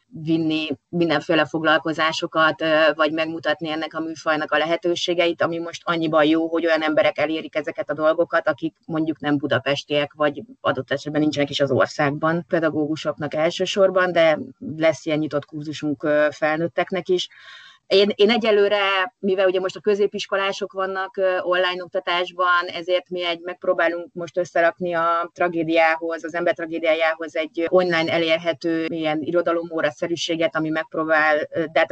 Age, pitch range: 30-49, 155-175 Hz